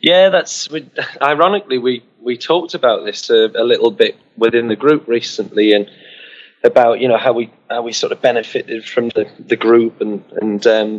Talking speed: 190 wpm